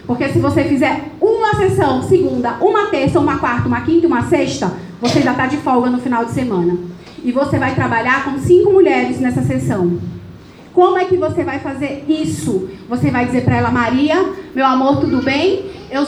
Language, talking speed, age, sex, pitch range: English, 190 wpm, 30-49, female, 235-315 Hz